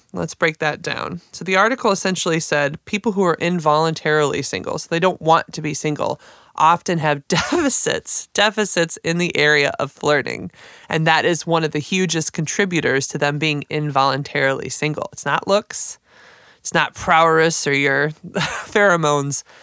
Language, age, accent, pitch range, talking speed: English, 20-39, American, 150-195 Hz, 160 wpm